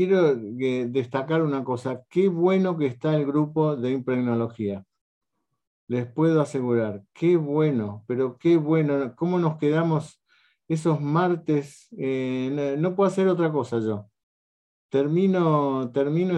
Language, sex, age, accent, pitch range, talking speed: Spanish, male, 50-69, Argentinian, 120-160 Hz, 125 wpm